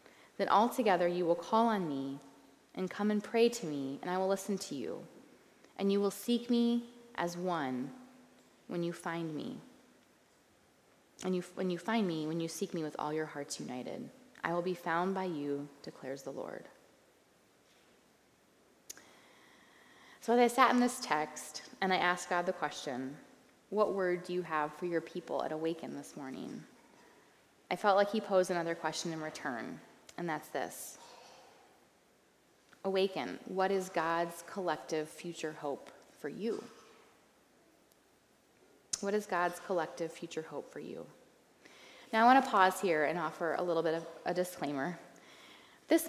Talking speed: 160 wpm